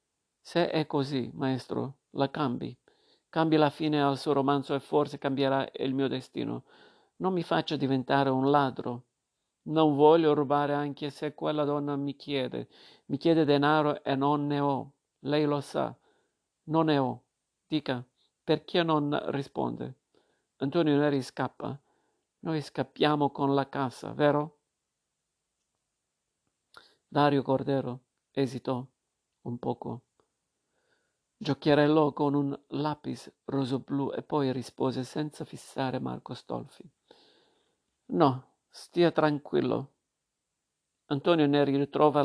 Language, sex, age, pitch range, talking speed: Italian, male, 50-69, 135-150 Hz, 115 wpm